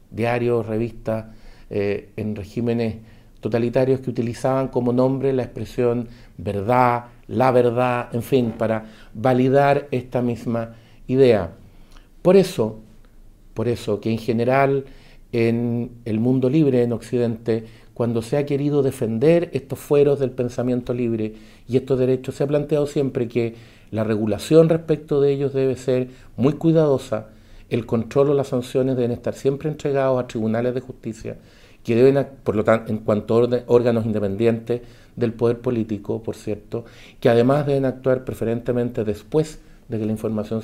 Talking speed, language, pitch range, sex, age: 150 wpm, Spanish, 110-135 Hz, male, 50-69